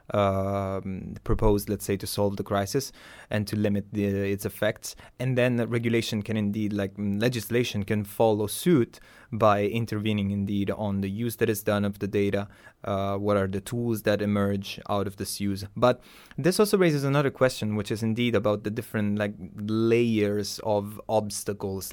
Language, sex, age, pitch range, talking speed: English, male, 20-39, 100-120 Hz, 175 wpm